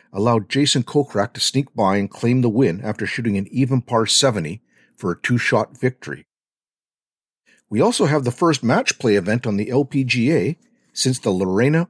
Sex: male